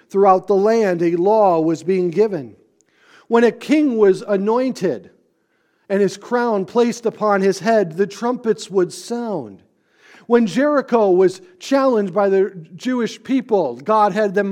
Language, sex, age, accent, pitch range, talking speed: English, male, 50-69, American, 170-215 Hz, 145 wpm